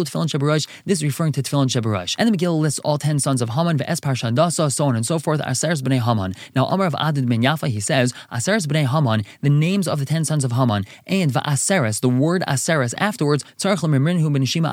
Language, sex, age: English, male, 20-39